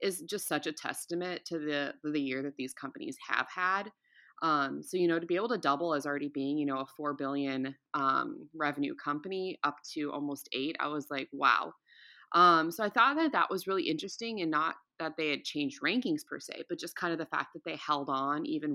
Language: English